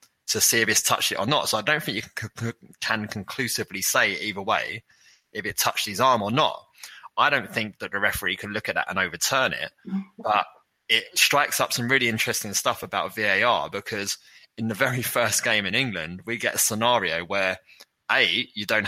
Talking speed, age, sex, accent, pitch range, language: 205 wpm, 20-39, male, British, 95-125 Hz, English